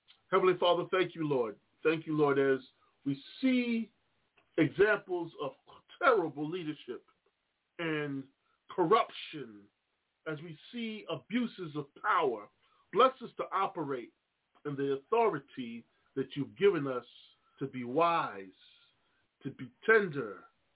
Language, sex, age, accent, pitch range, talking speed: English, male, 40-59, American, 145-205 Hz, 115 wpm